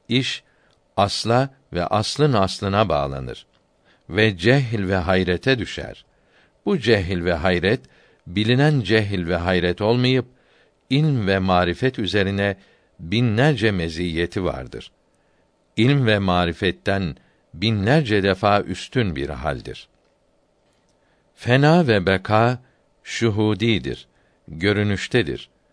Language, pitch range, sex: Turkish, 95-120 Hz, male